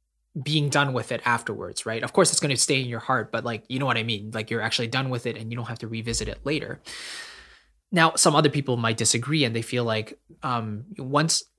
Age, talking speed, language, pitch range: 20-39, 250 wpm, English, 115-145 Hz